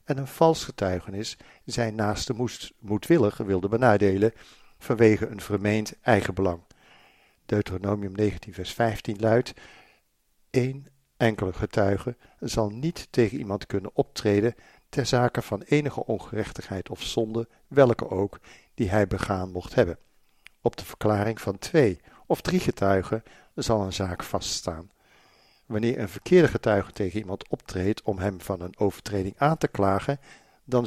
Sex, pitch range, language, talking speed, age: male, 100-135 Hz, Dutch, 135 wpm, 50-69